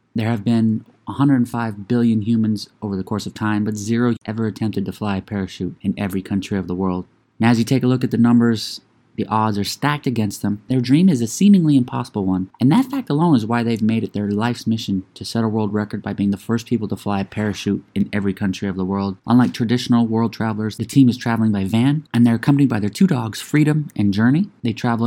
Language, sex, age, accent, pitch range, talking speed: English, male, 20-39, American, 105-120 Hz, 240 wpm